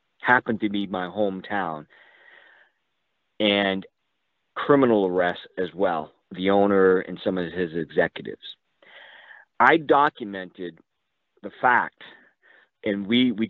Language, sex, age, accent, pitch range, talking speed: English, male, 40-59, American, 100-125 Hz, 105 wpm